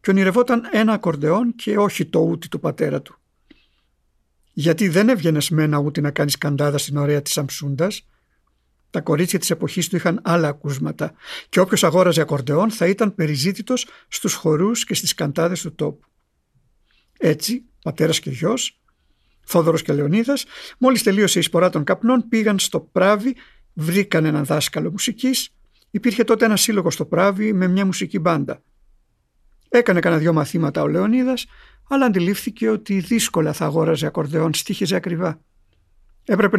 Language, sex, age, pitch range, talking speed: Greek, male, 50-69, 155-215 Hz, 150 wpm